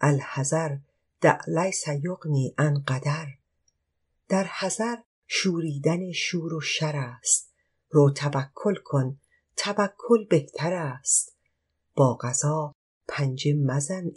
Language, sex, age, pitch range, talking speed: Persian, female, 50-69, 125-160 Hz, 90 wpm